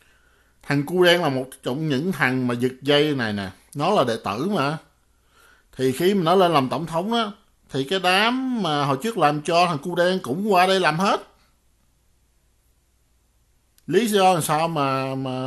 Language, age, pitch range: Vietnamese, 60-79, 110-150 Hz